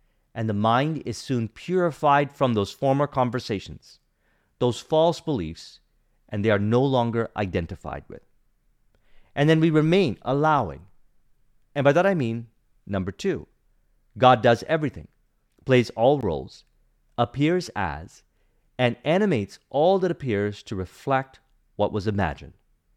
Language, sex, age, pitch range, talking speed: English, male, 40-59, 100-145 Hz, 130 wpm